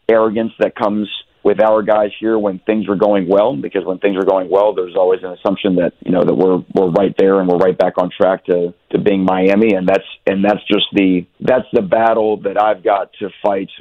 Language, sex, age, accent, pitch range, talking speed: English, male, 40-59, American, 95-110 Hz, 235 wpm